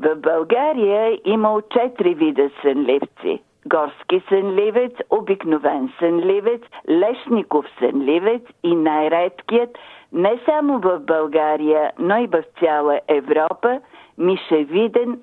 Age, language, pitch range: 50-69, Bulgarian, 170-245 Hz